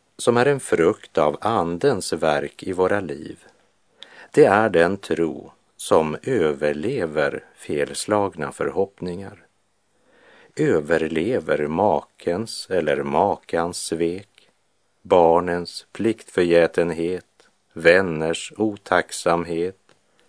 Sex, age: male, 50-69